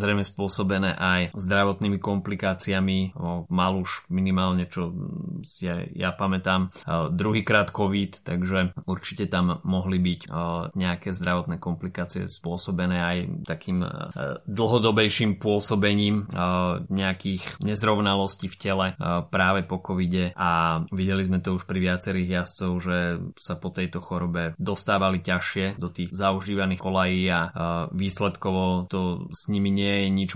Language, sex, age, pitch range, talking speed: Slovak, male, 20-39, 90-100 Hz, 130 wpm